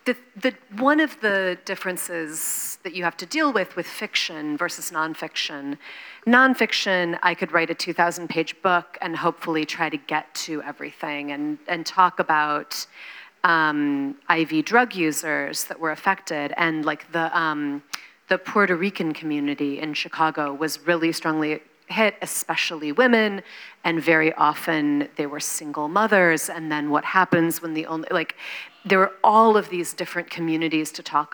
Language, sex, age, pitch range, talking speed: Polish, female, 30-49, 155-195 Hz, 155 wpm